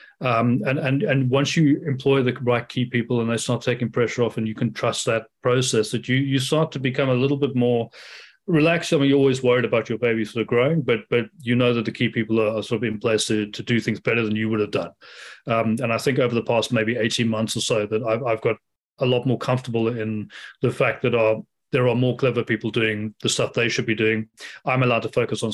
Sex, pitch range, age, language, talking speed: male, 110-125 Hz, 30-49, English, 260 wpm